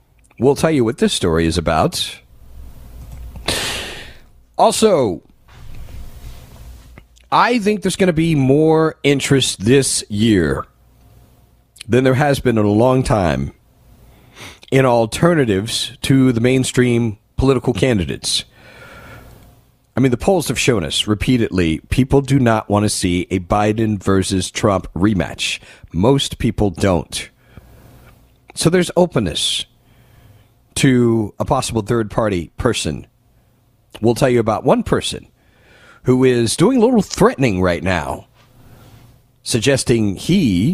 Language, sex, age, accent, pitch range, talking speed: English, male, 40-59, American, 105-135 Hz, 120 wpm